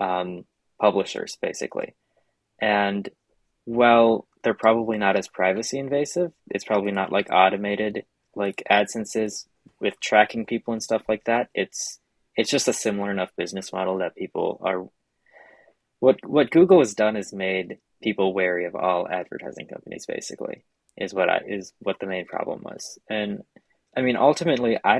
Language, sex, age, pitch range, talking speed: English, male, 20-39, 90-110 Hz, 155 wpm